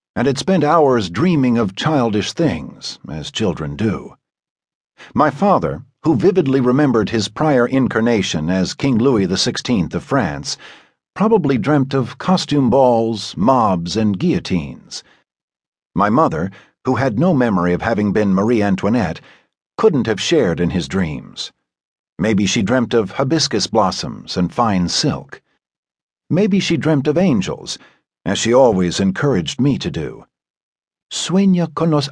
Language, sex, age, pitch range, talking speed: English, male, 60-79, 100-155 Hz, 140 wpm